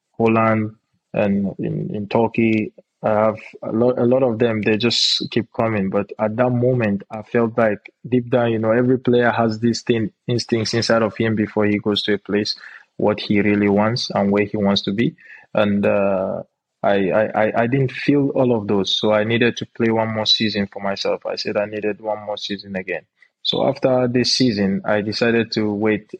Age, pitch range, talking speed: 20-39, 105-115 Hz, 200 wpm